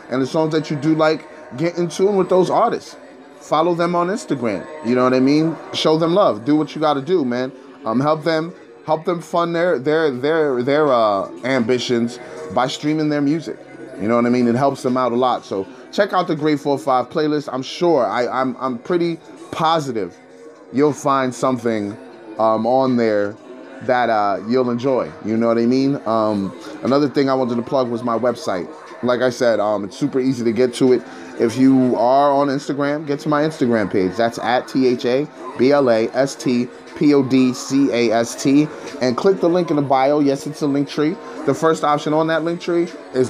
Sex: male